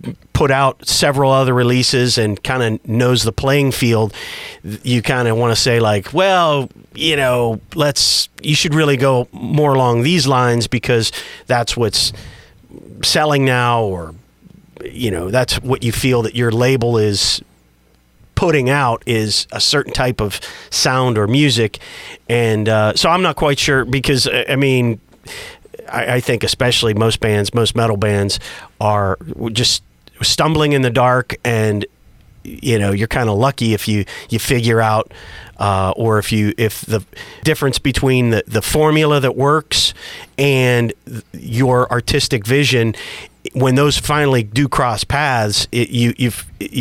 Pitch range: 110-130 Hz